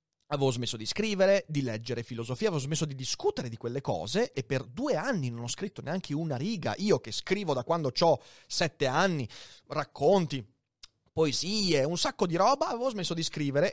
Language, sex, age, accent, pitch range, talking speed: Italian, male, 30-49, native, 125-200 Hz, 185 wpm